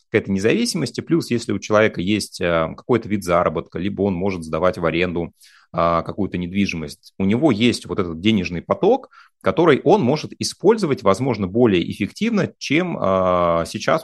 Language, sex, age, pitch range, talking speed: Russian, male, 30-49, 85-110 Hz, 150 wpm